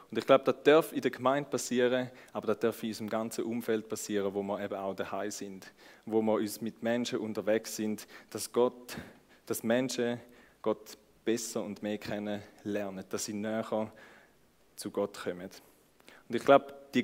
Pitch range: 105-130 Hz